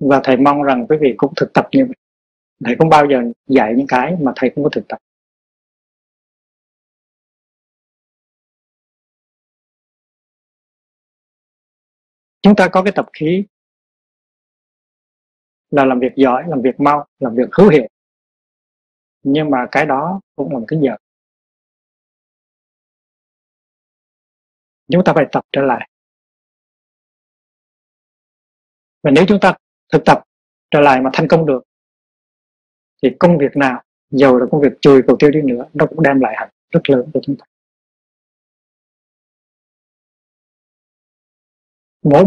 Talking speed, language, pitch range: 130 wpm, Vietnamese, 130-160 Hz